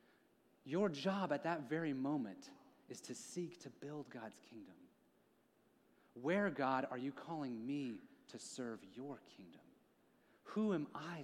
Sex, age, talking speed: male, 30-49, 140 wpm